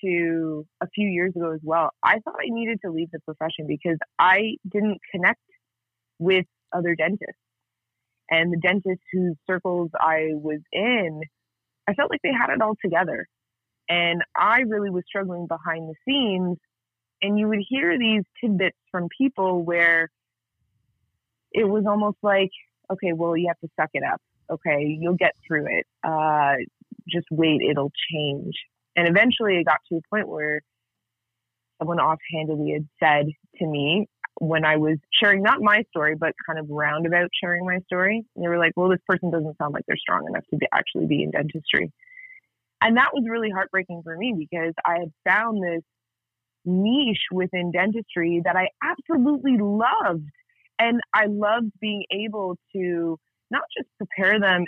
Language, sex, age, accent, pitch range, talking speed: English, female, 20-39, American, 155-200 Hz, 170 wpm